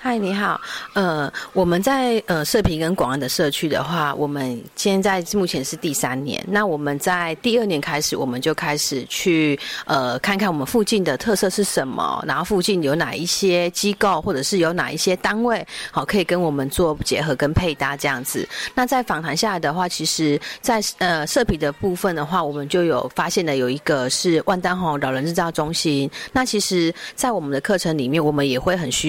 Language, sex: Chinese, female